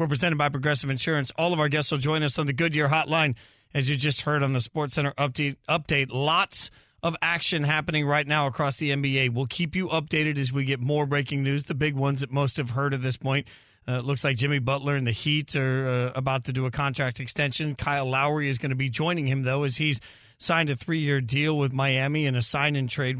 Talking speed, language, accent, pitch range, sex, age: 240 wpm, English, American, 135-175 Hz, male, 40-59